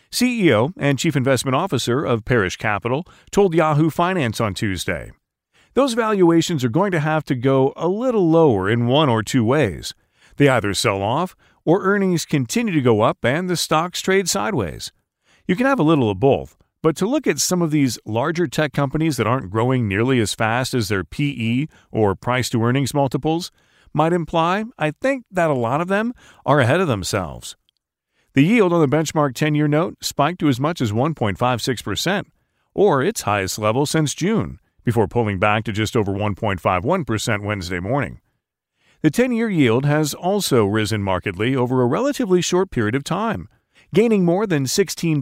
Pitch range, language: 110-170 Hz, English